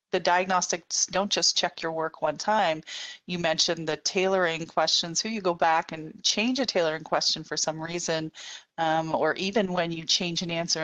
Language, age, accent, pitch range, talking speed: English, 30-49, American, 160-185 Hz, 190 wpm